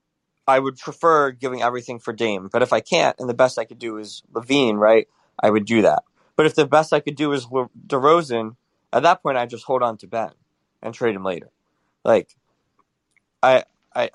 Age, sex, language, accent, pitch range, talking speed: 20-39, male, English, American, 110-145 Hz, 220 wpm